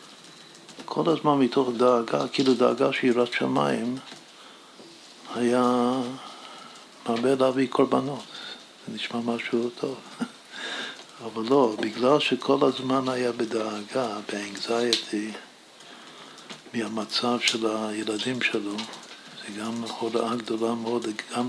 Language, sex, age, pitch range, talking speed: Hebrew, male, 60-79, 115-130 Hz, 95 wpm